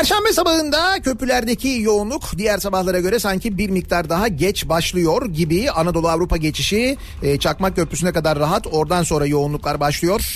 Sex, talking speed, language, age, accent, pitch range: male, 145 wpm, Turkish, 40-59, native, 150-190 Hz